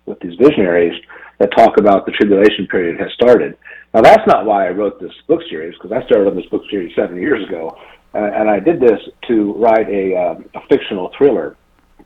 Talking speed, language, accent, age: 210 wpm, English, American, 50-69